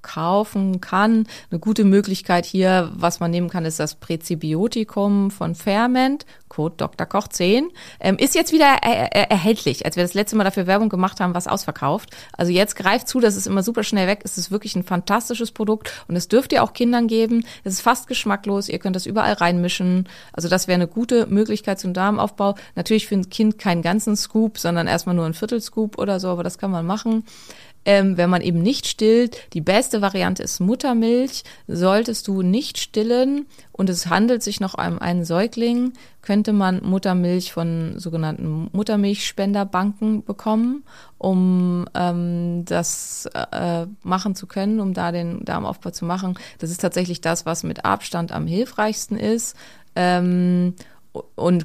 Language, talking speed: German, 175 wpm